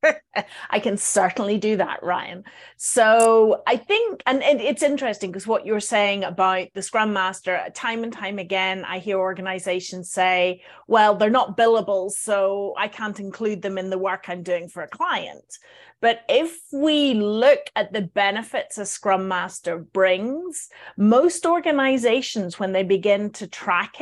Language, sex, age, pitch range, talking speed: English, female, 30-49, 190-260 Hz, 160 wpm